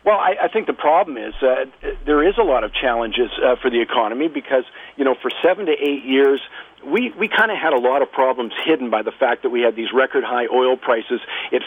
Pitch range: 130-150 Hz